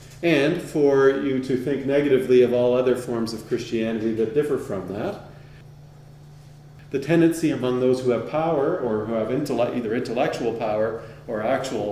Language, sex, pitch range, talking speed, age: English, male, 120-145 Hz, 155 wpm, 40-59